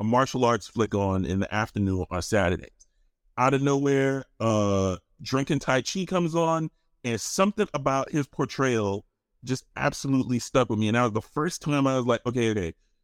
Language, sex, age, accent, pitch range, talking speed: English, male, 30-49, American, 120-155 Hz, 185 wpm